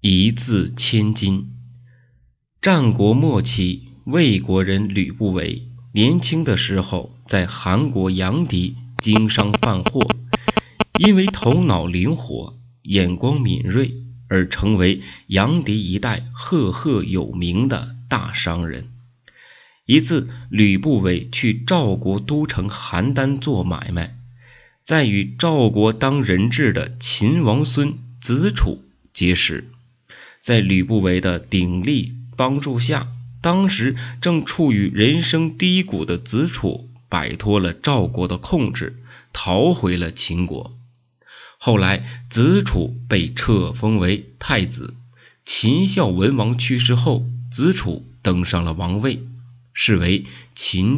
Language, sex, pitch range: Chinese, male, 95-125 Hz